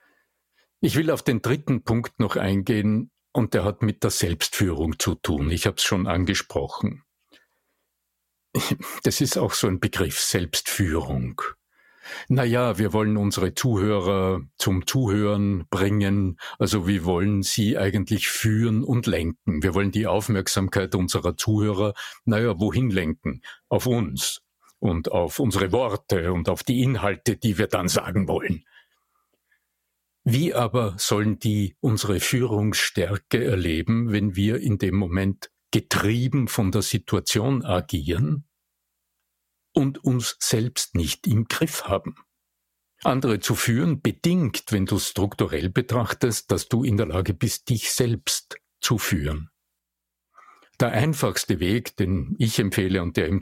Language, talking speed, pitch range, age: German, 135 wpm, 95-120 Hz, 60-79